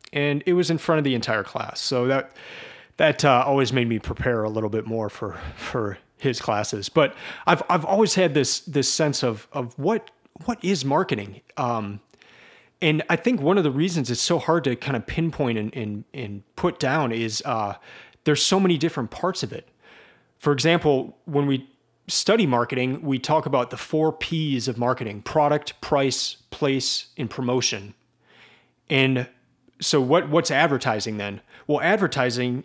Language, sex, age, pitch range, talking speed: English, male, 30-49, 120-155 Hz, 175 wpm